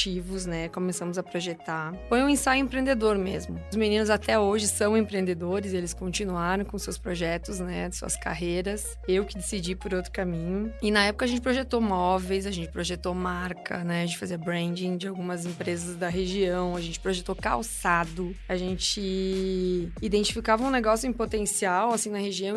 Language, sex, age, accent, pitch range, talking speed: English, female, 20-39, Brazilian, 185-225 Hz, 180 wpm